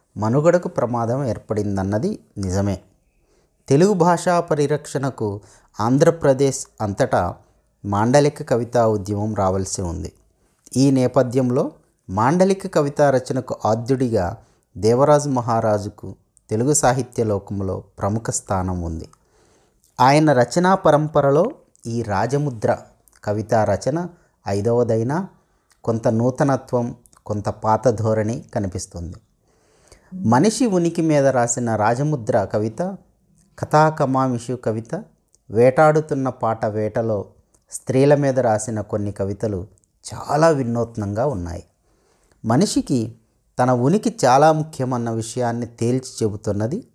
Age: 30-49